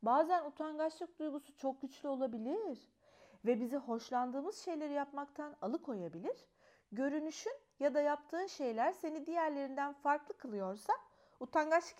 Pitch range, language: 225-310 Hz, Turkish